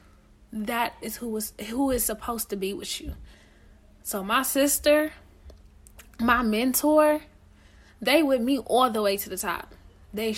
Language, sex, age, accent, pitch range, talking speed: English, female, 10-29, American, 195-260 Hz, 150 wpm